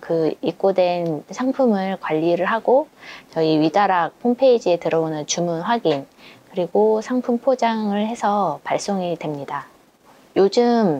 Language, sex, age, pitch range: Korean, female, 20-39, 165-220 Hz